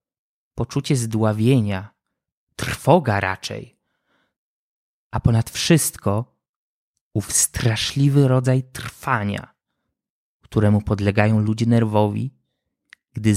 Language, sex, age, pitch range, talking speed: Polish, male, 20-39, 105-140 Hz, 70 wpm